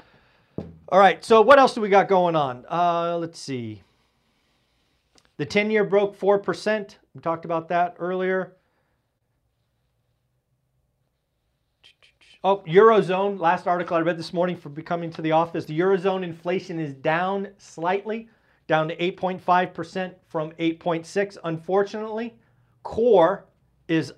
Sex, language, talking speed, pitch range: male, English, 125 wpm, 140-180 Hz